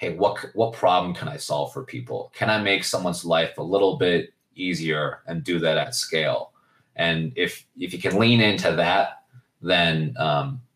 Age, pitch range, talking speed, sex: 30-49, 80-110 Hz, 185 wpm, male